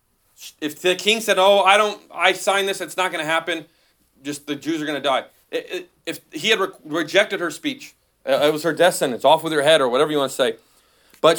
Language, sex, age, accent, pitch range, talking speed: English, male, 30-49, American, 140-180 Hz, 235 wpm